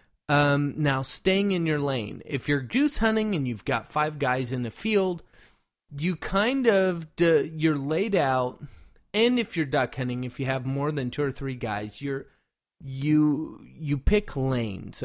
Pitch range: 130-175 Hz